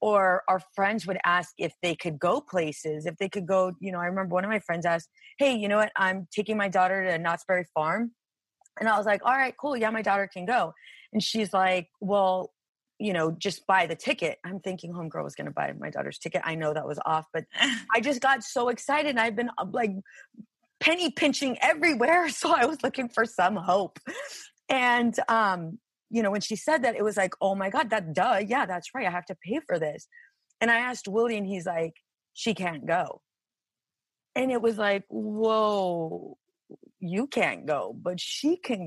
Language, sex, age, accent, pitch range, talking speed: English, female, 30-49, American, 175-235 Hz, 210 wpm